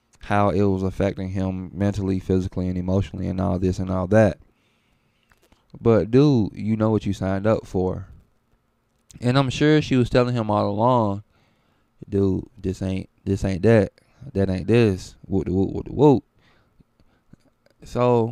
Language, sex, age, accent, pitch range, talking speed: English, male, 20-39, American, 95-105 Hz, 150 wpm